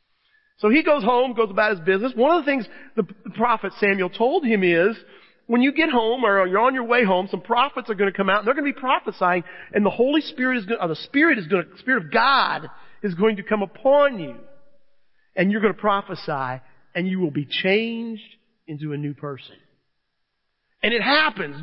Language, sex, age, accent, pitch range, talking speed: English, male, 40-59, American, 190-245 Hz, 220 wpm